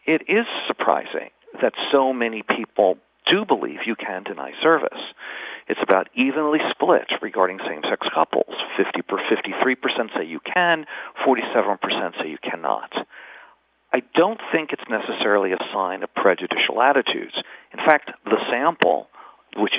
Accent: American